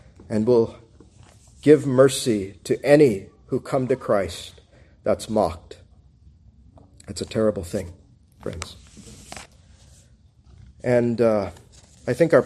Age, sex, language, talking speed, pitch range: 40-59, male, English, 105 wpm, 105-145 Hz